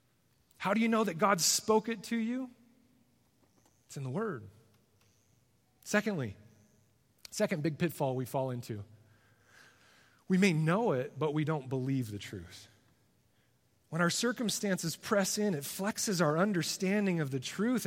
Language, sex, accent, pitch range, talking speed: English, male, American, 125-195 Hz, 145 wpm